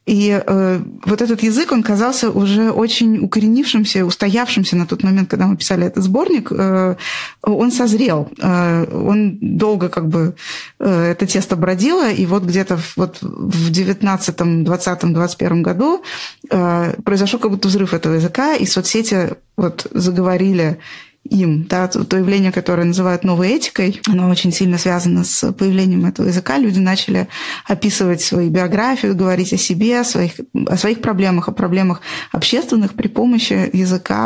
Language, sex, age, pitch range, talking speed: Russian, female, 20-39, 180-215 Hz, 150 wpm